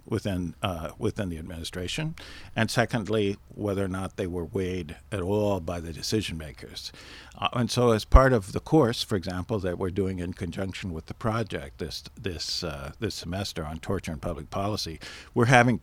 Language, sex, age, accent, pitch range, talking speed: English, male, 50-69, American, 90-110 Hz, 185 wpm